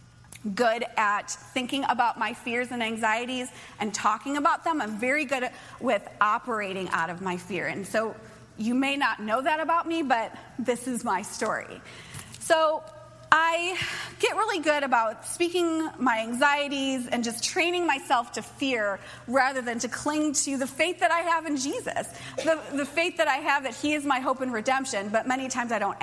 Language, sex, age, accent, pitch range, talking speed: English, female, 30-49, American, 230-310 Hz, 185 wpm